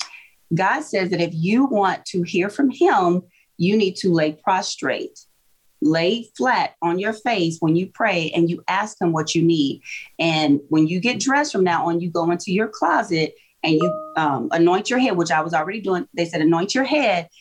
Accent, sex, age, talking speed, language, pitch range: American, female, 30-49, 205 wpm, English, 170-220 Hz